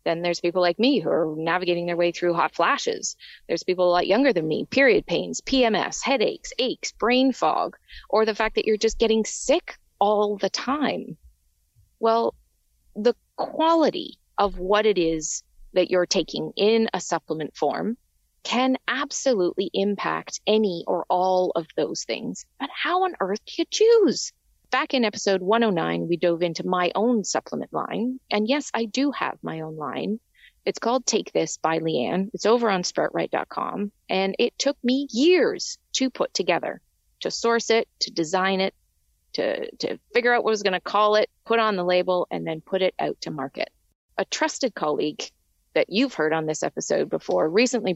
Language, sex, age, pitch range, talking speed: English, female, 30-49, 180-250 Hz, 180 wpm